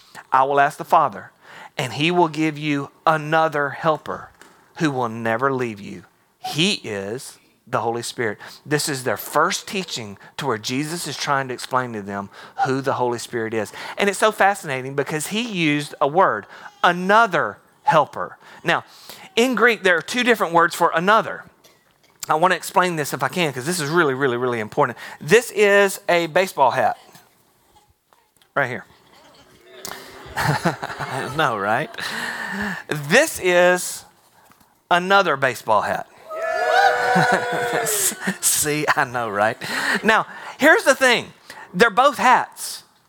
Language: English